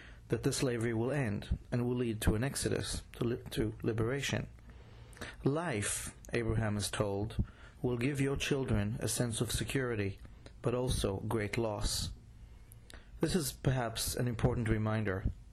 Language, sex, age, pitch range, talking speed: English, male, 30-49, 105-125 Hz, 140 wpm